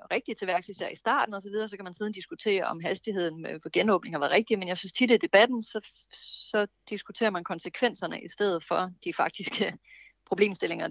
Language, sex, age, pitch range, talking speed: Danish, female, 30-49, 175-210 Hz, 205 wpm